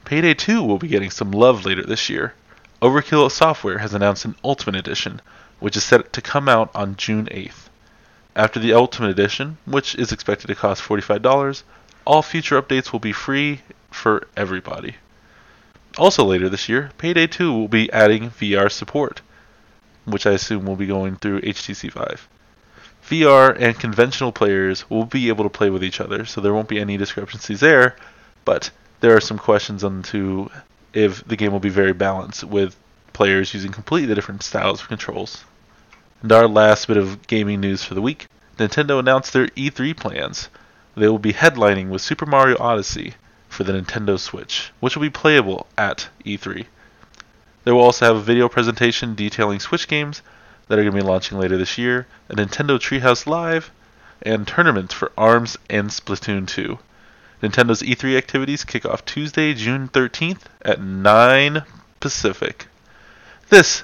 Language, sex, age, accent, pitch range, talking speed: English, male, 20-39, American, 100-135 Hz, 170 wpm